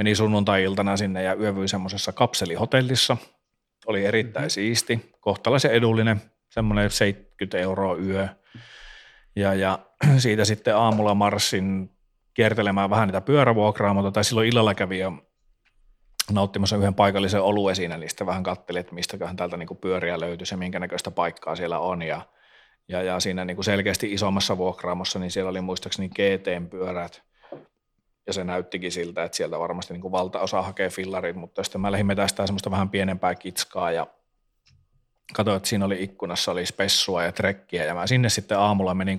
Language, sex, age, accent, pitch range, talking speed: Finnish, male, 40-59, native, 95-105 Hz, 155 wpm